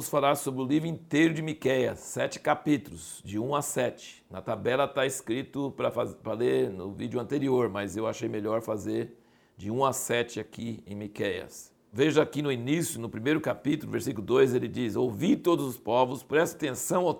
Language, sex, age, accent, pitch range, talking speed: Portuguese, male, 60-79, Brazilian, 120-155 Hz, 180 wpm